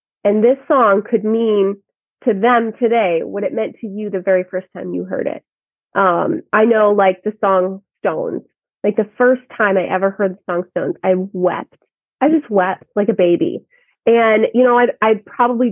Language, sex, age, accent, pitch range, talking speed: English, female, 30-49, American, 195-250 Hz, 195 wpm